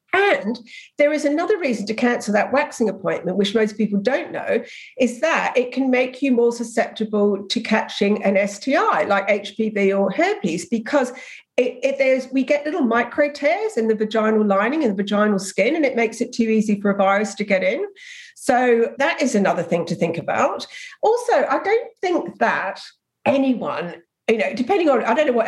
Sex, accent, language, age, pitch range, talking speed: female, British, English, 50-69, 205-280 Hz, 195 wpm